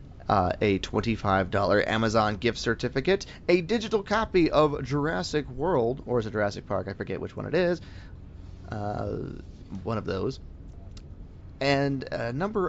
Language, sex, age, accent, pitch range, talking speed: English, male, 30-49, American, 95-125 Hz, 140 wpm